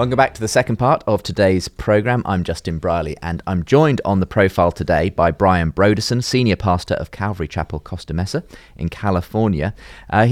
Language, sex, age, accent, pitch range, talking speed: English, male, 30-49, British, 75-100 Hz, 185 wpm